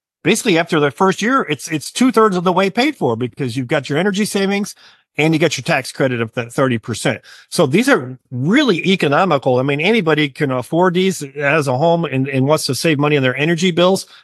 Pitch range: 140-175 Hz